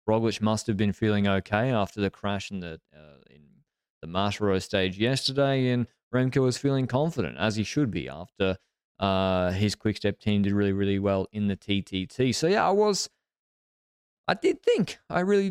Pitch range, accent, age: 100-135 Hz, Australian, 20-39